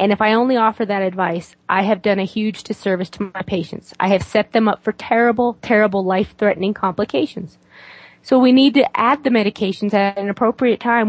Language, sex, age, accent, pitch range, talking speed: English, female, 30-49, American, 195-240 Hz, 200 wpm